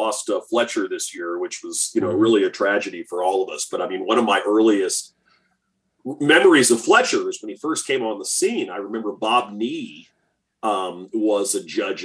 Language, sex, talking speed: English, male, 205 wpm